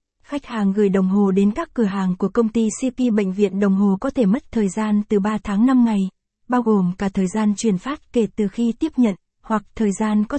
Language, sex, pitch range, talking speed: Vietnamese, female, 200-235 Hz, 250 wpm